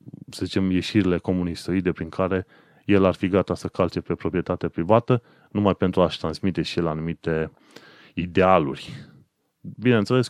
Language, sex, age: Romanian, male, 30-49